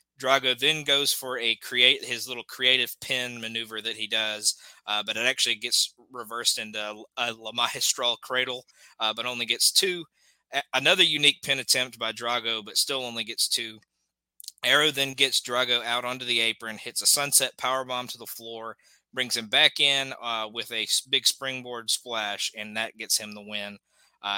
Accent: American